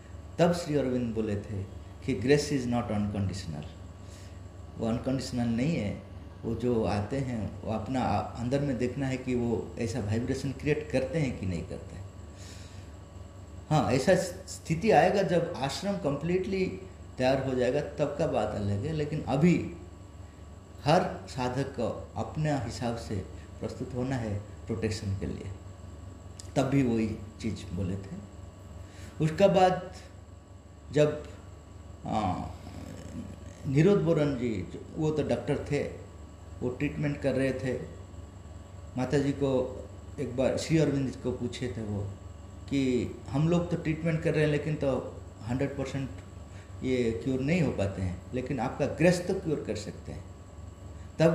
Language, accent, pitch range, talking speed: Hindi, native, 95-135 Hz, 145 wpm